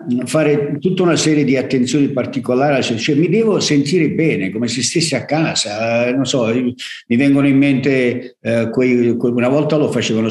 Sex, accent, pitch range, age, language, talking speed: male, native, 110-150 Hz, 60-79, Italian, 175 wpm